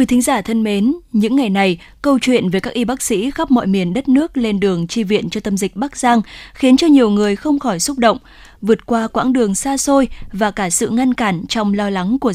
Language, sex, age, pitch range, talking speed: Vietnamese, female, 20-39, 200-250 Hz, 255 wpm